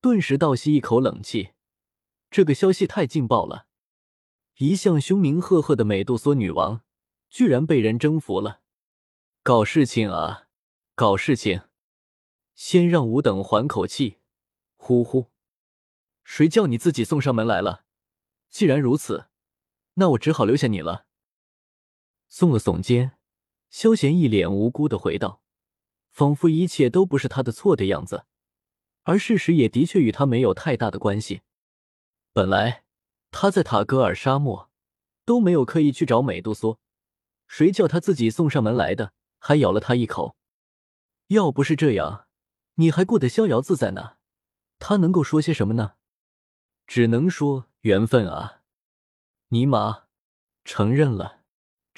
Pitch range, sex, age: 110-165 Hz, male, 20-39